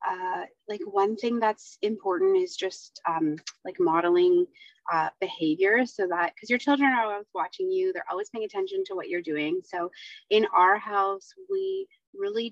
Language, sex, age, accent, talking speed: English, female, 30-49, American, 175 wpm